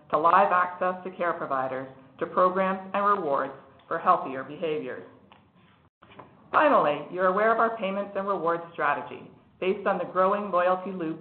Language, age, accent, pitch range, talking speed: English, 50-69, American, 160-200 Hz, 150 wpm